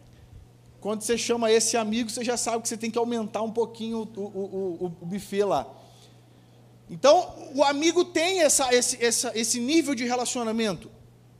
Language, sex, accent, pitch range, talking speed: Portuguese, male, Brazilian, 170-275 Hz, 160 wpm